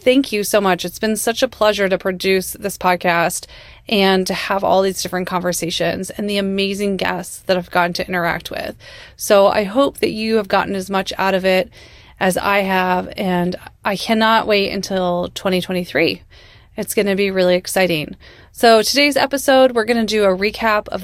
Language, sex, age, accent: English, female, 30-49, American